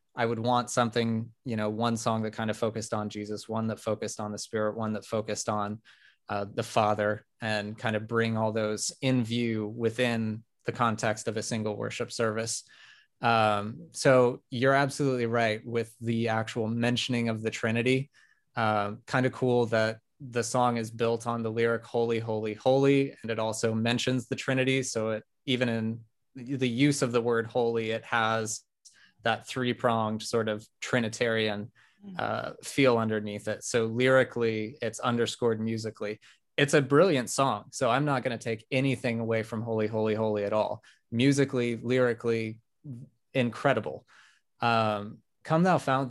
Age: 20-39